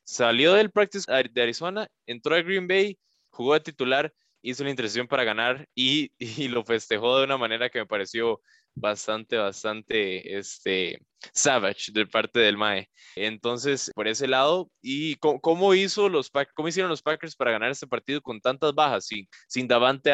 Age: 20-39